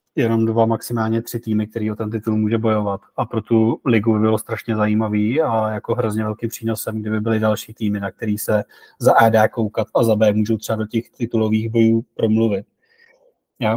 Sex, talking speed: male, 200 wpm